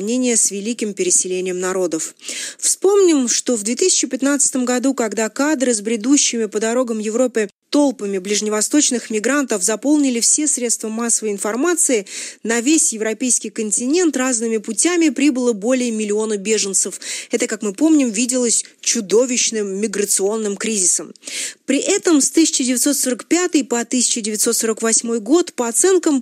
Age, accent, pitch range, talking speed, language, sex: 30-49, native, 215-280 Hz, 115 wpm, Russian, female